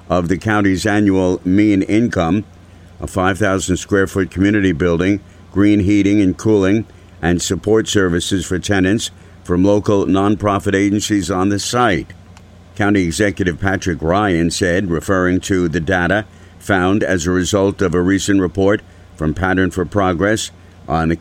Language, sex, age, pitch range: English, male, 60-79, 90-110 Hz